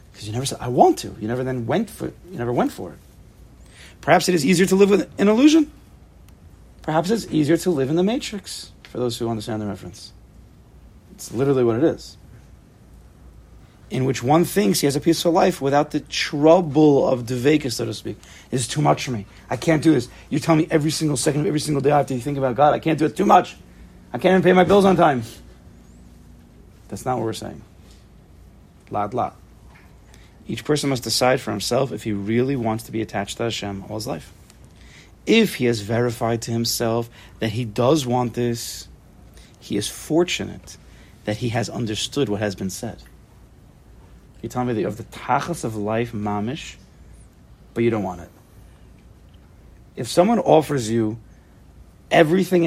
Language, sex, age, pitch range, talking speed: English, male, 40-59, 105-155 Hz, 195 wpm